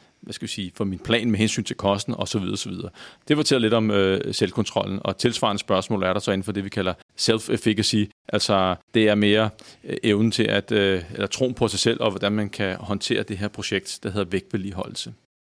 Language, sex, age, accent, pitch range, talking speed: Danish, male, 40-59, native, 100-115 Hz, 230 wpm